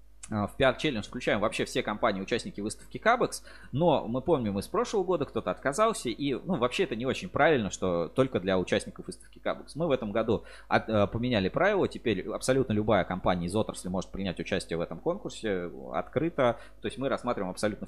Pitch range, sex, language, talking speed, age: 90-115 Hz, male, Russian, 180 wpm, 20-39